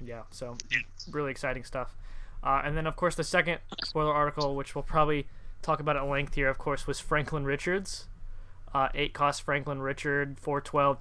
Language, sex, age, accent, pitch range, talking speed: English, male, 20-39, American, 125-145 Hz, 180 wpm